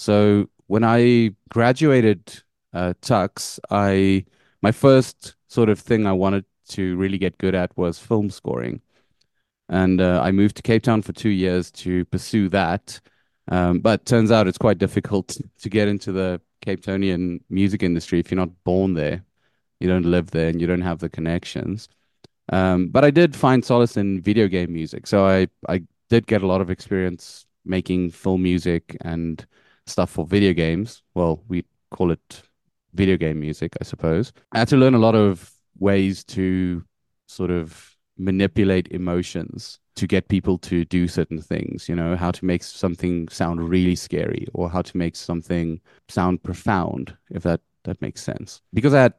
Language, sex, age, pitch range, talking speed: English, male, 30-49, 90-105 Hz, 175 wpm